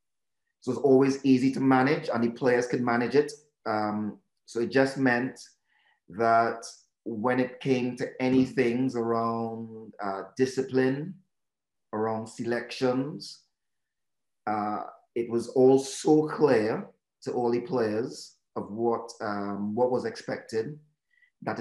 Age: 30-49